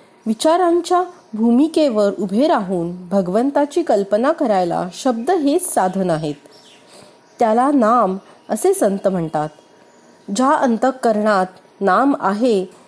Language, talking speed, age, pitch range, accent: Marathi, 95 wpm, 30-49, 200-290 Hz, native